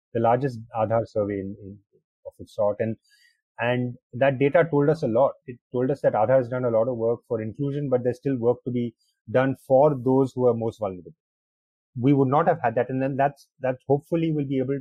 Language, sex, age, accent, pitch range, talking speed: English, male, 30-49, Indian, 115-145 Hz, 230 wpm